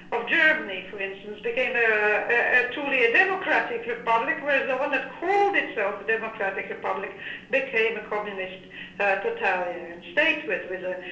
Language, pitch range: English, 215-330 Hz